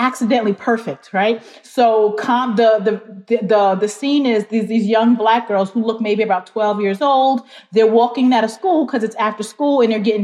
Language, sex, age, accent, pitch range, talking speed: English, female, 30-49, American, 210-250 Hz, 205 wpm